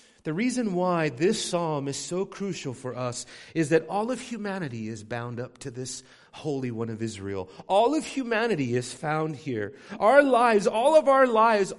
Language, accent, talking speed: English, American, 185 wpm